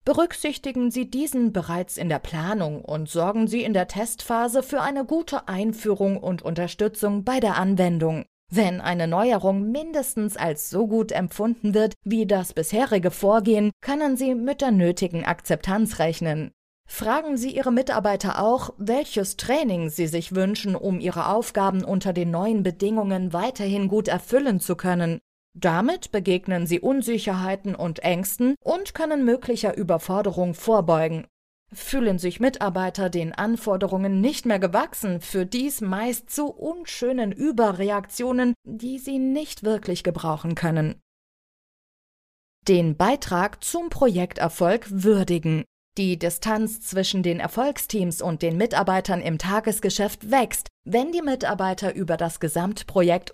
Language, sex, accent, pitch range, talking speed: German, female, German, 180-240 Hz, 130 wpm